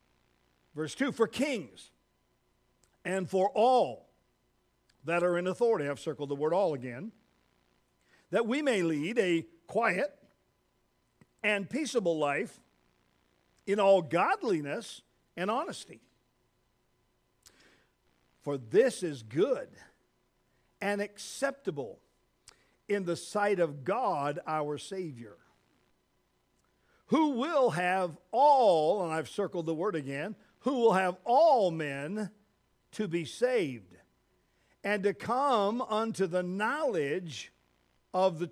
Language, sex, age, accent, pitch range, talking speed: English, male, 50-69, American, 155-230 Hz, 110 wpm